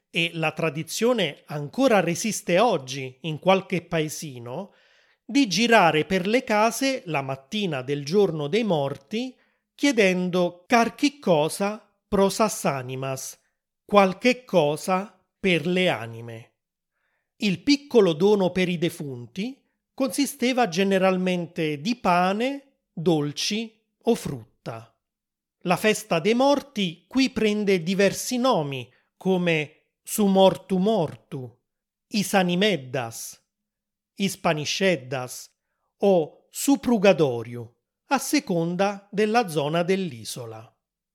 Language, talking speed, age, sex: Italian, 90 wpm, 30-49, male